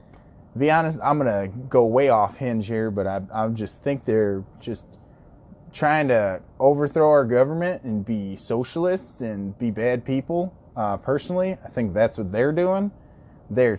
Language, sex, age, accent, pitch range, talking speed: English, male, 20-39, American, 110-135 Hz, 165 wpm